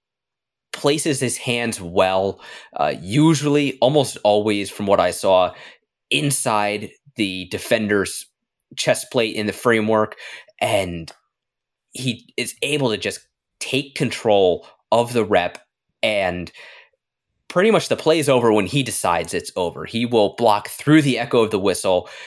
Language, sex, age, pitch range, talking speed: English, male, 20-39, 105-135 Hz, 140 wpm